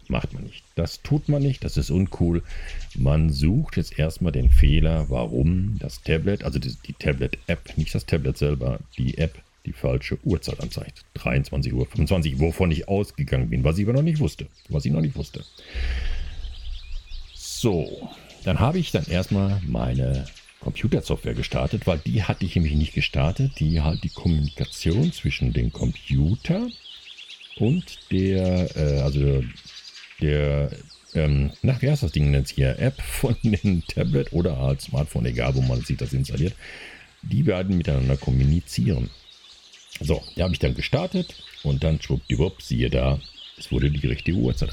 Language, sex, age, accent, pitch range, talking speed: German, male, 50-69, German, 70-90 Hz, 155 wpm